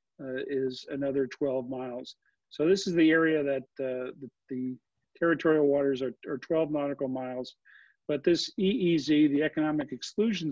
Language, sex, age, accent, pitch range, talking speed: English, male, 50-69, American, 130-155 Hz, 155 wpm